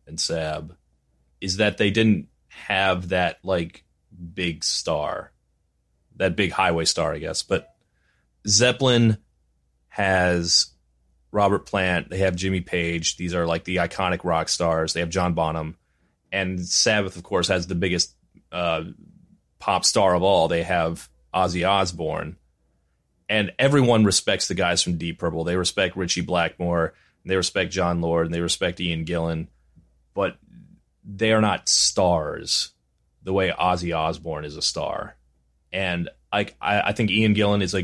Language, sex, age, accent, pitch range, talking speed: English, male, 30-49, American, 75-95 Hz, 150 wpm